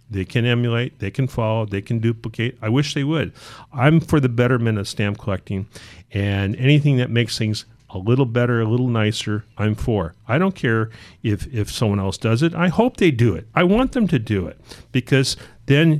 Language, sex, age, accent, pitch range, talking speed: English, male, 40-59, American, 105-130 Hz, 205 wpm